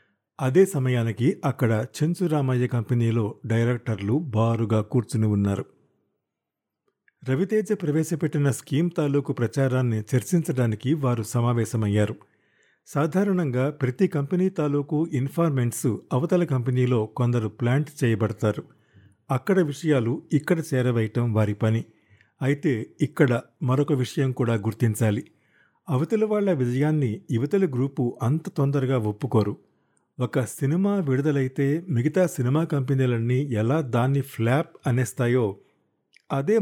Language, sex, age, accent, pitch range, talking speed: Telugu, male, 50-69, native, 115-150 Hz, 95 wpm